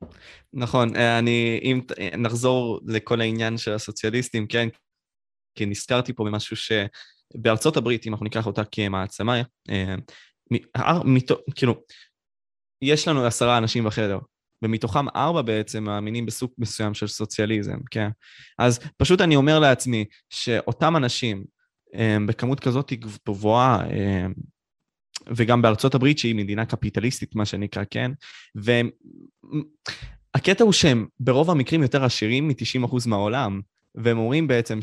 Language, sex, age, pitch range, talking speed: Hebrew, male, 20-39, 110-130 Hz, 120 wpm